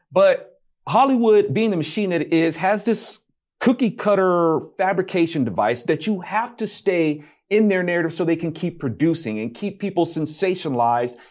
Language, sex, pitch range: English, male, 140-200 Hz